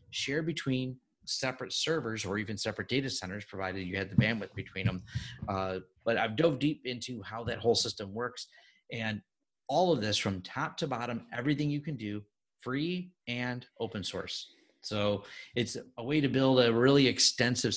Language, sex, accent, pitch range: English, male, American, 105-130 Hz